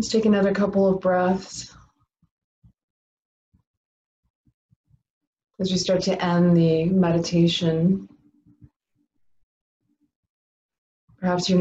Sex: female